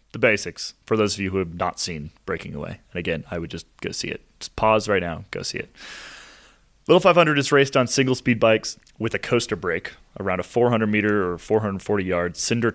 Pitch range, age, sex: 100-120 Hz, 30-49, male